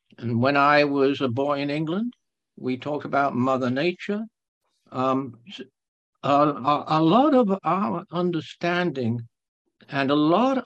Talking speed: 130 wpm